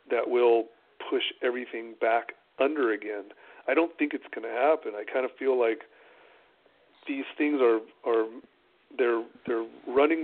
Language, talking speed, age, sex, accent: English, 150 wpm, 40-59, male, American